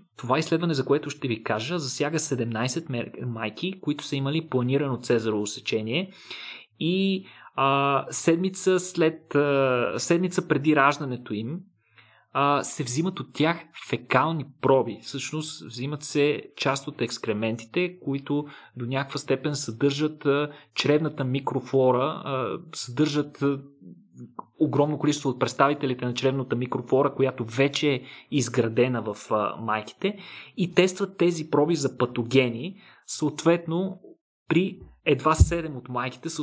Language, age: Bulgarian, 30-49